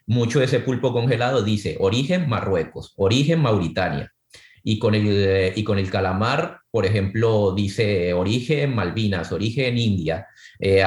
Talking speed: 140 wpm